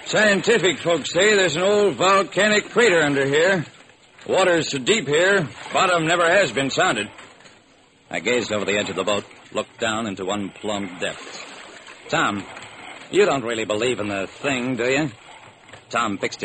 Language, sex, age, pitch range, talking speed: English, male, 60-79, 155-215 Hz, 165 wpm